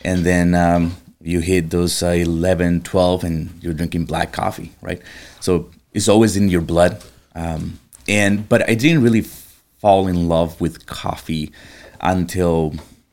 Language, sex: English, male